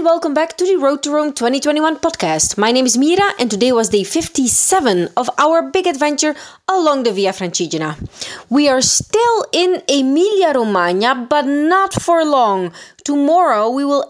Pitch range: 220-325 Hz